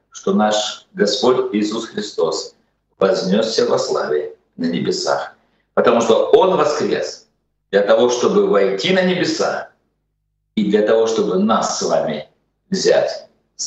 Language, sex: Russian, male